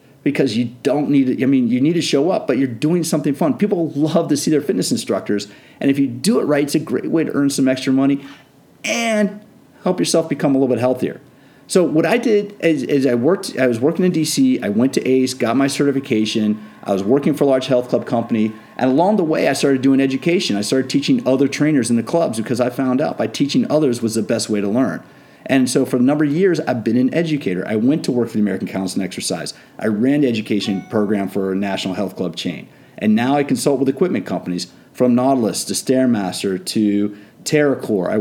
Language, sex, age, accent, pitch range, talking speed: English, male, 40-59, American, 115-160 Hz, 235 wpm